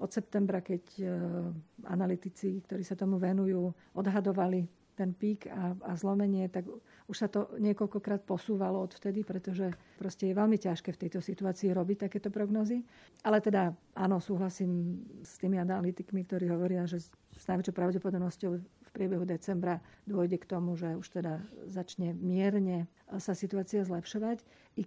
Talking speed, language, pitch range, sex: 145 wpm, Slovak, 185-205 Hz, female